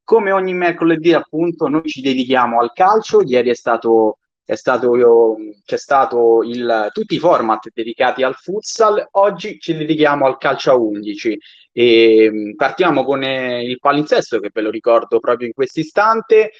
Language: Italian